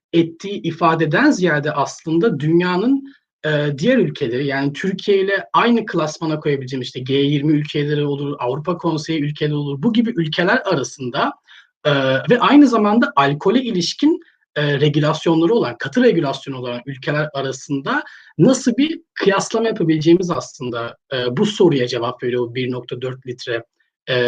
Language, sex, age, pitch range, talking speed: Turkish, male, 40-59, 145-220 Hz, 135 wpm